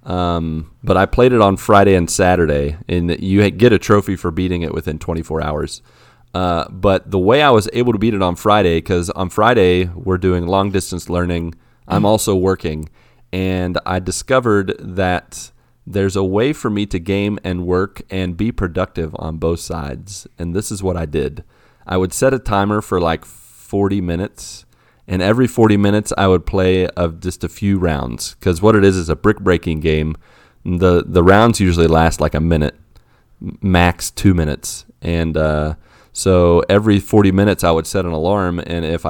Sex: male